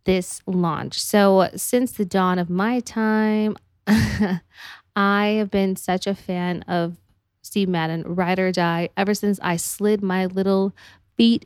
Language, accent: English, American